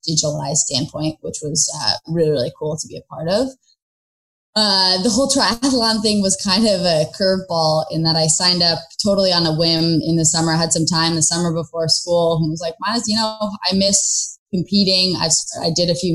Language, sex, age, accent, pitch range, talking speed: English, female, 20-39, American, 155-180 Hz, 210 wpm